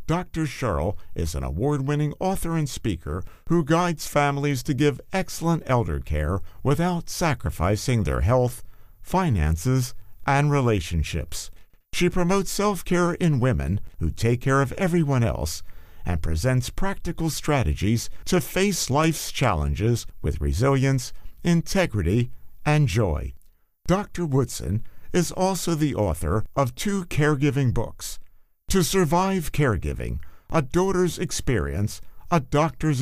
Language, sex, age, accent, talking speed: English, male, 50-69, American, 120 wpm